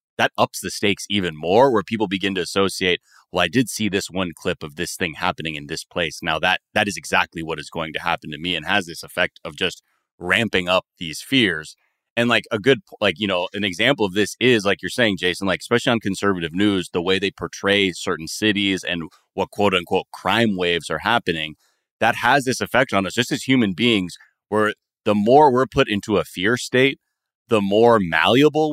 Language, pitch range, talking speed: English, 90-115 Hz, 215 wpm